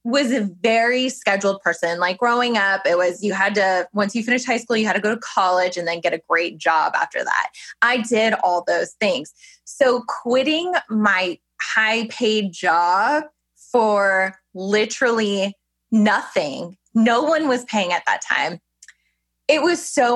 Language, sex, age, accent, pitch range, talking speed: English, female, 20-39, American, 185-240 Hz, 165 wpm